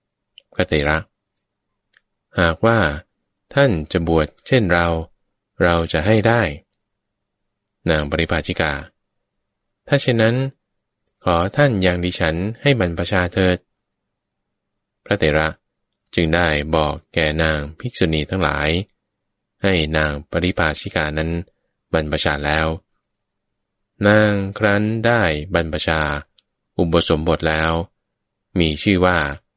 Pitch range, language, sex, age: 80-100 Hz, English, male, 20-39